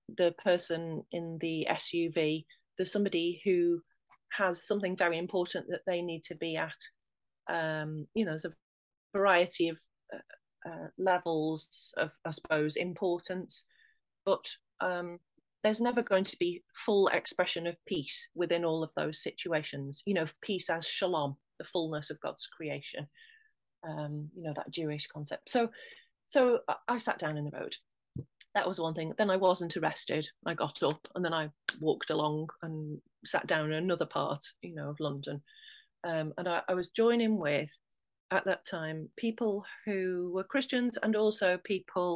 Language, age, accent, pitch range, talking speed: English, 30-49, British, 160-200 Hz, 165 wpm